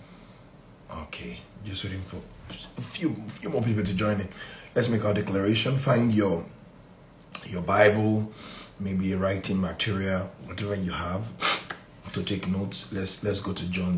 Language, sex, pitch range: English, male, 85-95 Hz